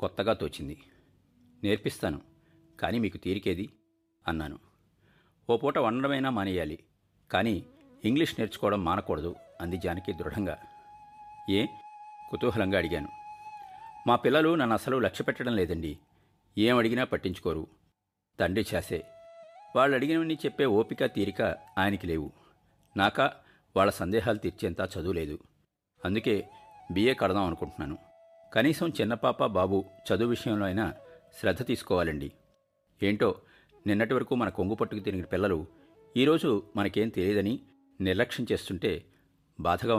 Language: Telugu